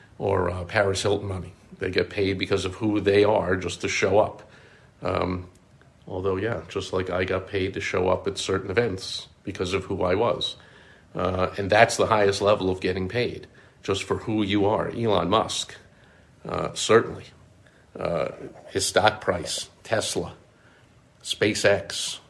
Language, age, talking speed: English, 50-69, 160 wpm